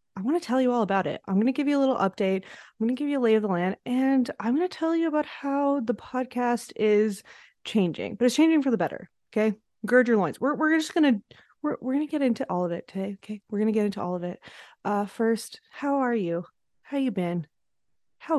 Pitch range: 185-260 Hz